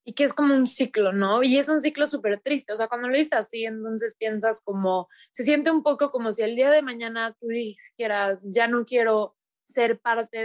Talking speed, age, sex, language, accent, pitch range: 225 wpm, 20-39, female, Spanish, Mexican, 220-265 Hz